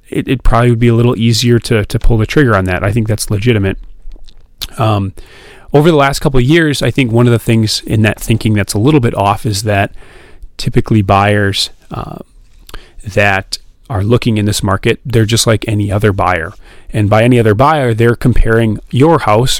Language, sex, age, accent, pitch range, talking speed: English, male, 30-49, American, 105-125 Hz, 200 wpm